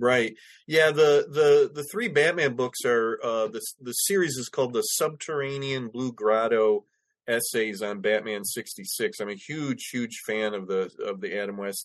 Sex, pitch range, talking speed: male, 105-140 Hz, 175 wpm